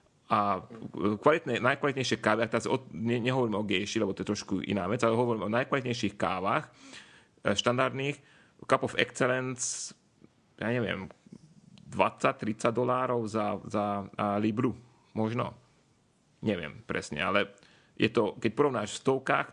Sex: male